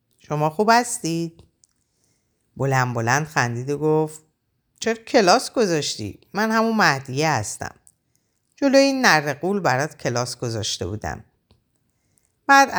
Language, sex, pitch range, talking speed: Persian, female, 120-170 Hz, 110 wpm